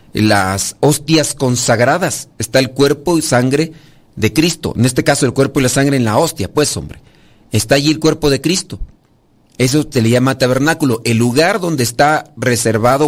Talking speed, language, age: 180 wpm, Spanish, 40-59